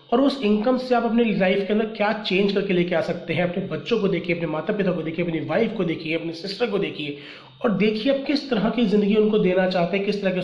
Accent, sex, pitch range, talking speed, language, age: native, male, 175-215 Hz, 270 wpm, Hindi, 30-49